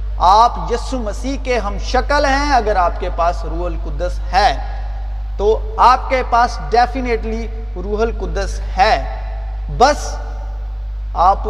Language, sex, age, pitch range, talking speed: Urdu, male, 40-59, 205-265 Hz, 120 wpm